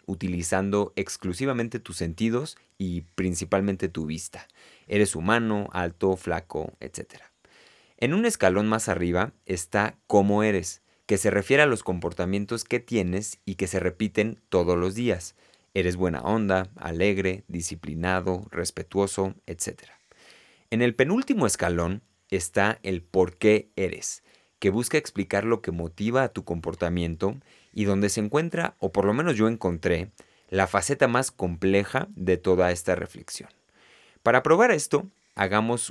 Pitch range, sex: 90-115 Hz, male